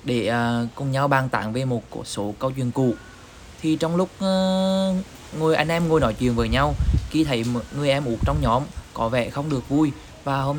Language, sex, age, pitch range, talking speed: Vietnamese, male, 20-39, 115-145 Hz, 205 wpm